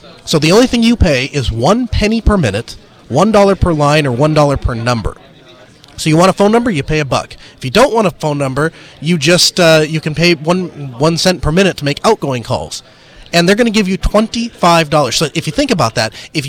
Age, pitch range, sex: 30-49, 140-175 Hz, male